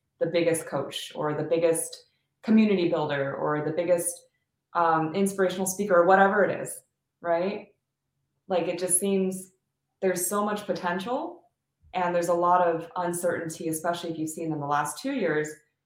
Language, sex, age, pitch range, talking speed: Bulgarian, female, 20-39, 155-195 Hz, 160 wpm